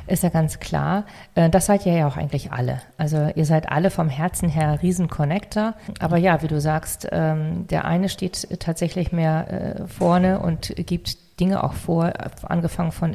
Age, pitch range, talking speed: 40-59, 165-200 Hz, 170 wpm